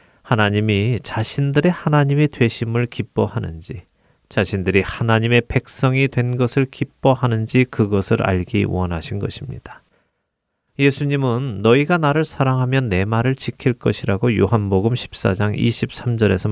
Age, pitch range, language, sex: 30-49, 105-135 Hz, Korean, male